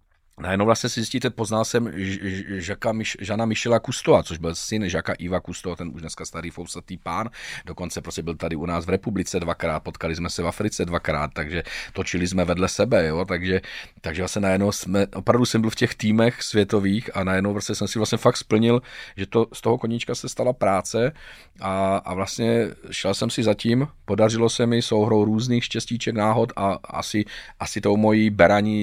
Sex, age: male, 40-59